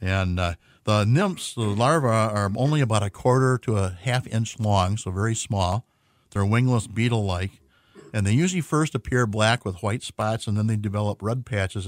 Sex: male